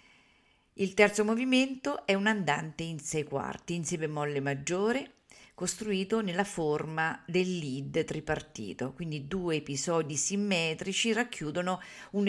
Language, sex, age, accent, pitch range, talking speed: Italian, female, 50-69, native, 155-200 Hz, 120 wpm